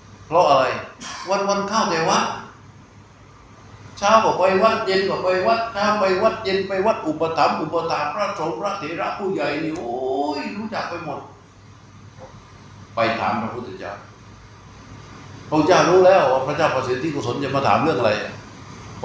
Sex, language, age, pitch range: male, Thai, 60-79, 110-150 Hz